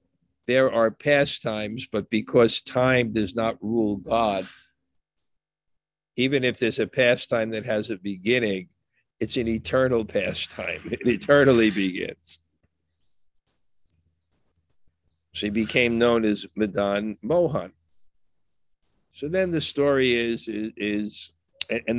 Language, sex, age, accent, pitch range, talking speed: English, male, 50-69, American, 95-120 Hz, 110 wpm